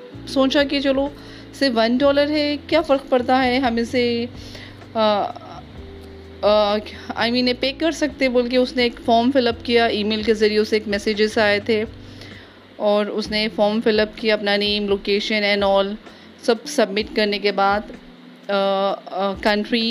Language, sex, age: Urdu, female, 30-49